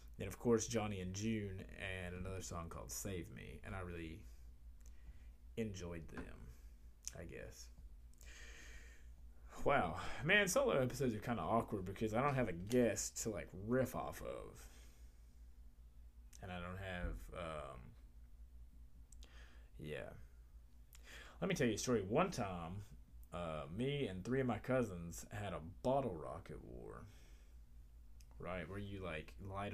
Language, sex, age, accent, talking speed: English, male, 20-39, American, 140 wpm